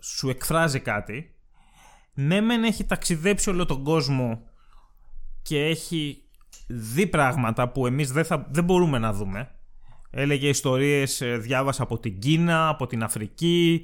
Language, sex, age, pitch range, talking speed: Greek, male, 20-39, 130-205 Hz, 125 wpm